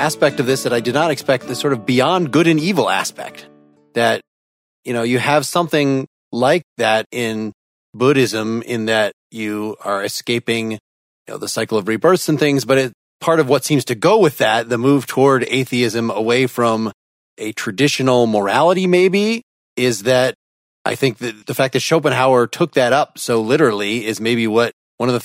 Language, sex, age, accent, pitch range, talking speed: English, male, 30-49, American, 110-145 Hz, 190 wpm